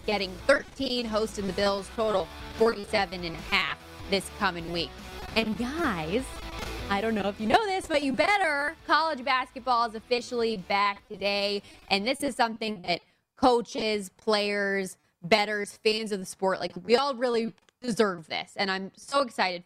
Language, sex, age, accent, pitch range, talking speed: English, female, 20-39, American, 185-240 Hz, 160 wpm